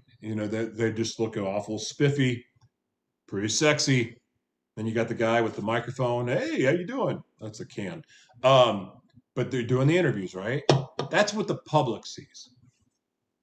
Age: 30-49